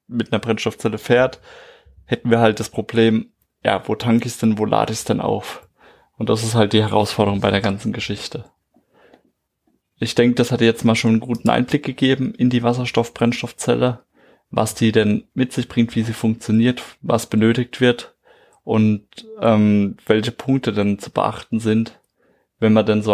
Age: 20-39